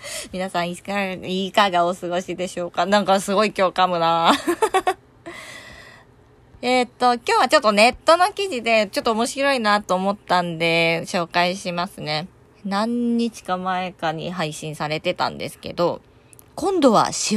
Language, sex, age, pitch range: Japanese, female, 20-39, 175-265 Hz